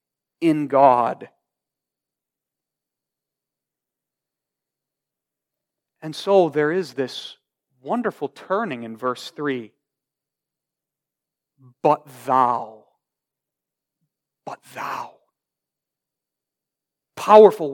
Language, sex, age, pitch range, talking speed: English, male, 40-59, 145-220 Hz, 60 wpm